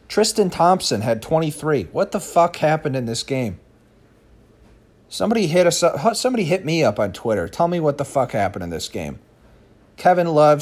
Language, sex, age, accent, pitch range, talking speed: English, male, 40-59, American, 105-155 Hz, 175 wpm